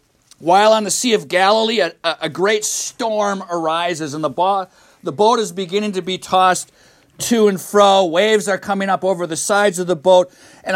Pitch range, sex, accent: 185-245 Hz, male, American